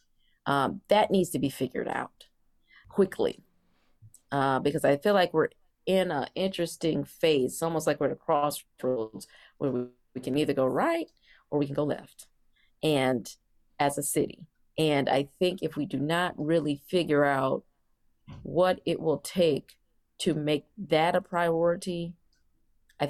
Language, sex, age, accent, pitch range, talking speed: English, female, 30-49, American, 140-165 Hz, 160 wpm